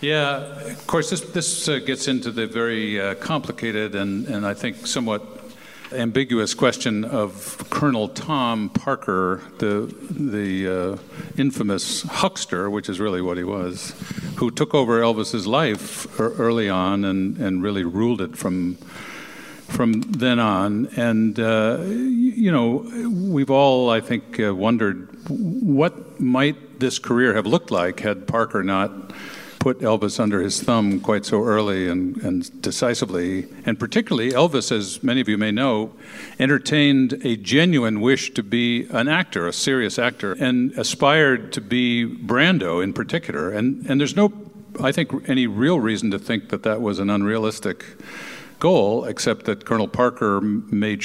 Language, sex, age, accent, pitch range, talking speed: English, male, 50-69, American, 100-135 Hz, 155 wpm